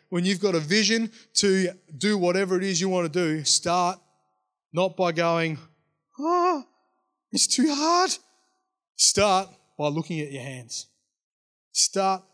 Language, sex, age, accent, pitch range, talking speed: English, male, 20-39, Australian, 145-180 Hz, 140 wpm